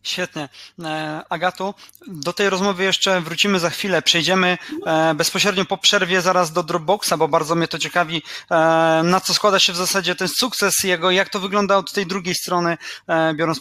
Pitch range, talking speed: 160-190 Hz, 170 wpm